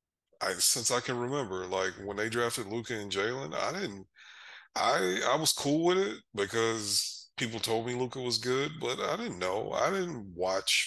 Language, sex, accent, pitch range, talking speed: English, male, American, 95-115 Hz, 190 wpm